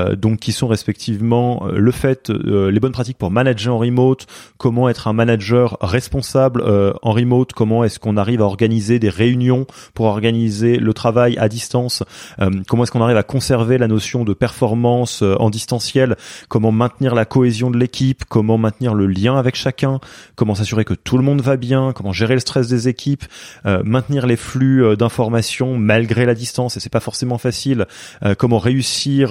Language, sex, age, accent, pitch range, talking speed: French, male, 20-39, French, 100-125 Hz, 190 wpm